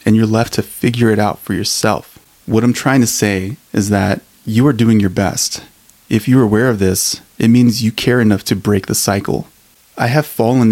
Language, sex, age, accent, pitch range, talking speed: English, male, 30-49, American, 105-120 Hz, 215 wpm